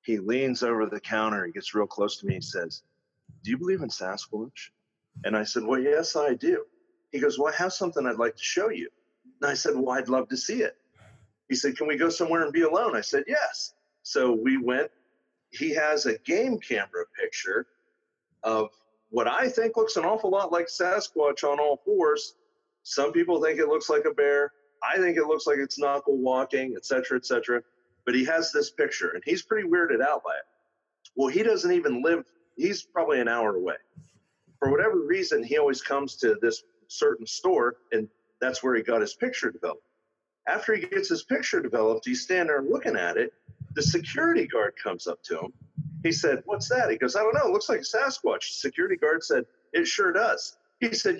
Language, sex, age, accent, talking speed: English, male, 40-59, American, 210 wpm